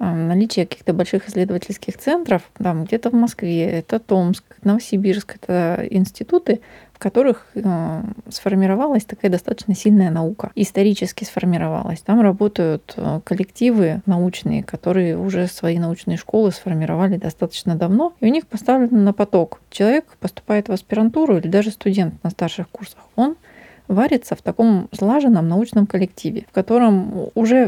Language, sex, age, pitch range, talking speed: Russian, female, 20-39, 180-215 Hz, 135 wpm